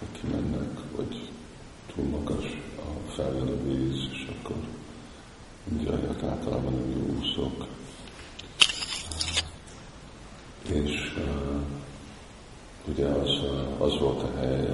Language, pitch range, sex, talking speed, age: Hungarian, 65-75 Hz, male, 85 wpm, 50-69